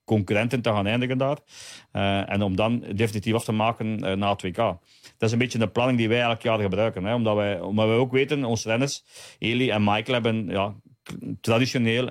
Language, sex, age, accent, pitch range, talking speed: Dutch, male, 40-59, Dutch, 100-115 Hz, 215 wpm